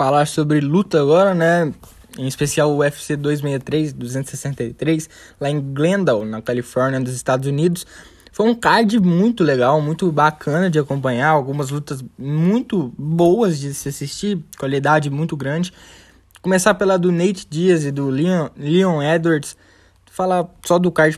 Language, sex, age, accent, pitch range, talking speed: Portuguese, male, 10-29, Brazilian, 140-170 Hz, 145 wpm